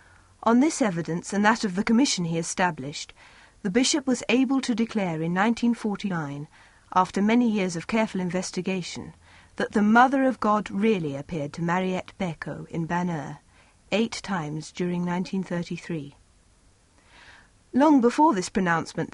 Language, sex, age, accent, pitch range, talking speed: English, female, 40-59, British, 155-225 Hz, 140 wpm